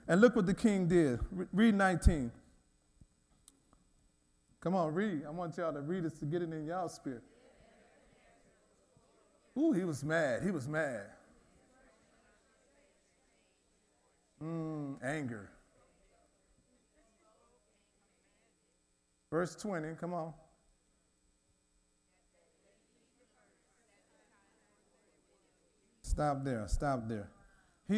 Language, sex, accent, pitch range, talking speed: English, male, American, 115-175 Hz, 70 wpm